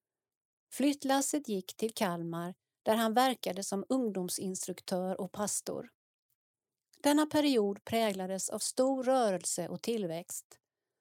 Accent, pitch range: native, 185-255 Hz